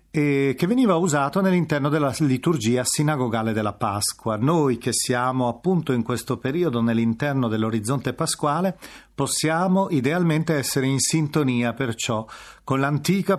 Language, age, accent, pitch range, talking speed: Italian, 40-59, native, 120-155 Hz, 120 wpm